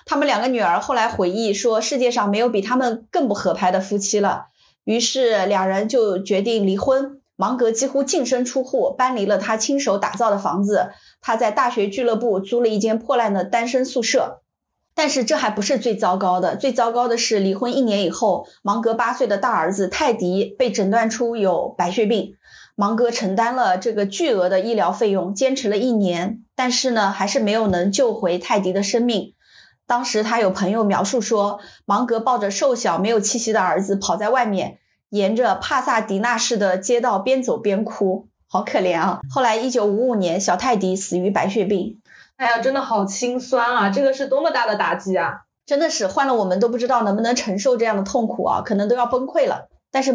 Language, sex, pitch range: Chinese, female, 200-250 Hz